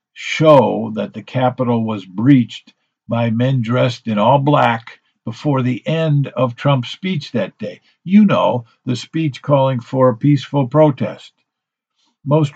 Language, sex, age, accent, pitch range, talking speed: English, male, 50-69, American, 115-140 Hz, 145 wpm